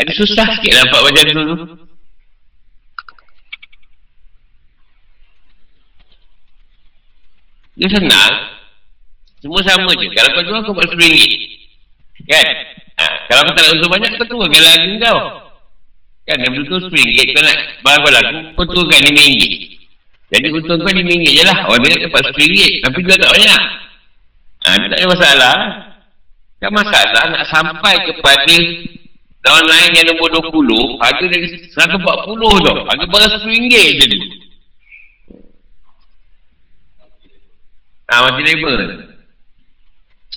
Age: 50-69